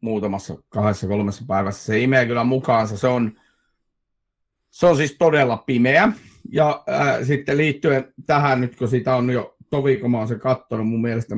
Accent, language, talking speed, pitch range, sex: native, Finnish, 175 wpm, 115-140 Hz, male